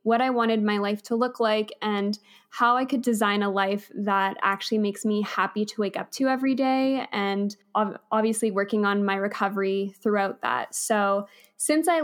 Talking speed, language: 185 wpm, English